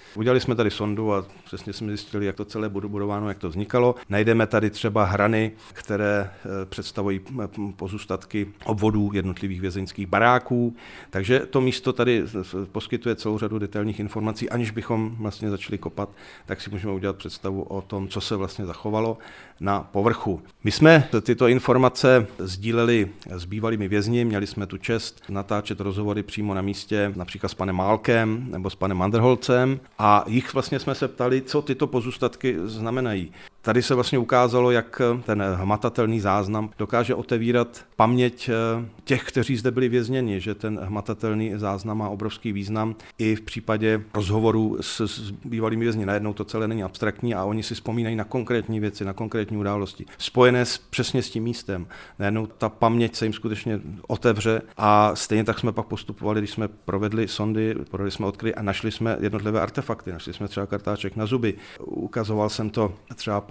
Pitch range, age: 100-115 Hz, 40-59